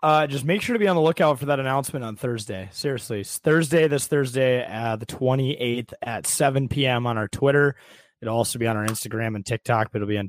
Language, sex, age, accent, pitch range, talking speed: English, male, 20-39, American, 115-140 Hz, 225 wpm